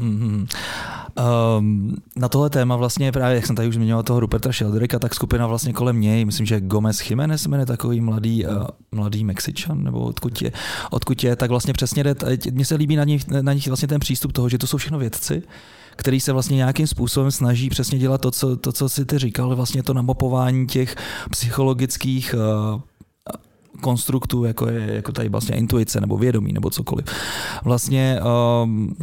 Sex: male